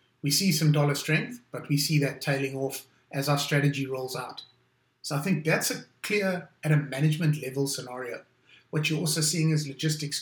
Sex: male